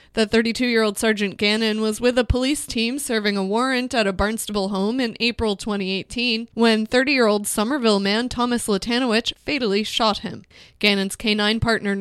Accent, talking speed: American, 155 wpm